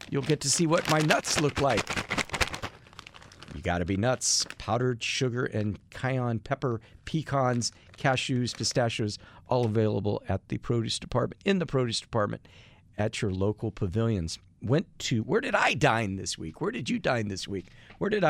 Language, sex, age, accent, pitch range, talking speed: English, male, 50-69, American, 105-135 Hz, 170 wpm